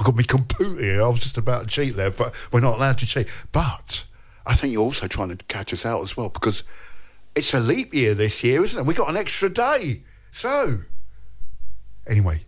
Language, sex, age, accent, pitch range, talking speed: English, male, 50-69, British, 100-130 Hz, 220 wpm